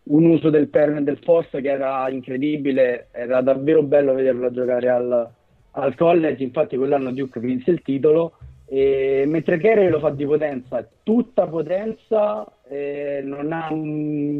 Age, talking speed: 30-49, 155 wpm